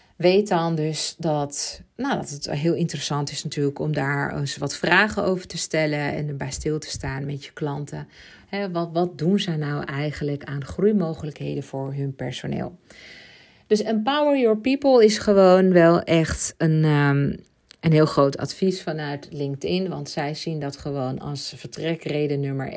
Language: Dutch